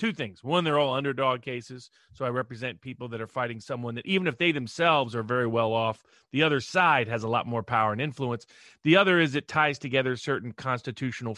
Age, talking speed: 30-49, 220 wpm